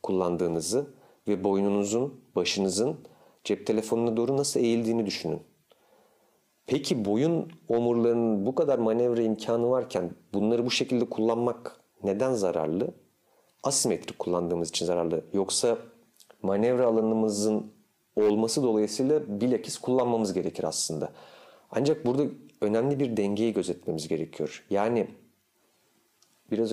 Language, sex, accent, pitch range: Turkish, male, native, 105-130 Hz